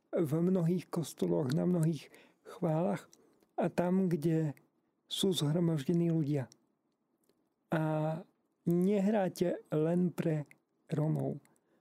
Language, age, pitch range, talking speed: Slovak, 40-59, 155-190 Hz, 85 wpm